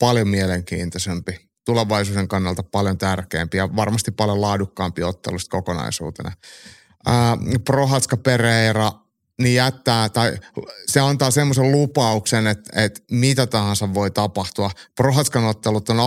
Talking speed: 110 wpm